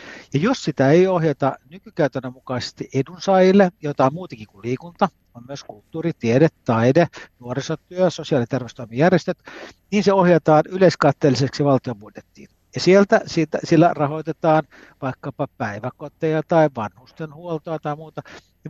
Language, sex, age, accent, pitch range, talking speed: Finnish, male, 60-79, native, 125-165 Hz, 130 wpm